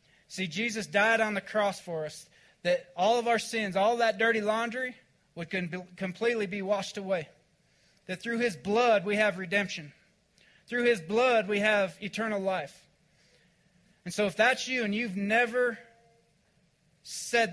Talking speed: 155 wpm